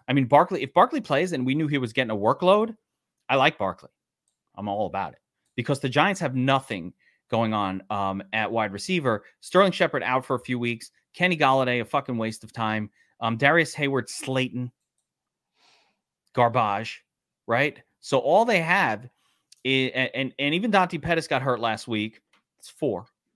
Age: 30-49